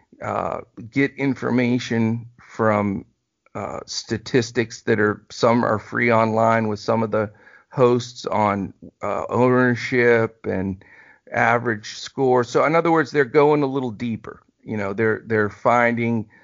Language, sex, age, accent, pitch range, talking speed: English, male, 50-69, American, 110-130 Hz, 135 wpm